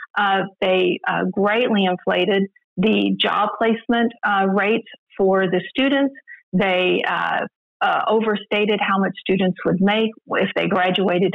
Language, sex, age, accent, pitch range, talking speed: English, female, 40-59, American, 195-245 Hz, 130 wpm